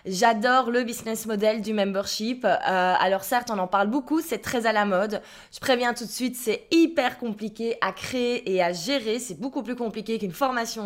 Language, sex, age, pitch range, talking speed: French, female, 20-39, 220-270 Hz, 205 wpm